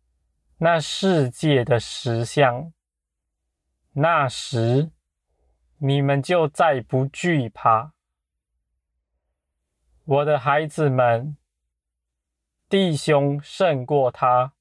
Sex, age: male, 20-39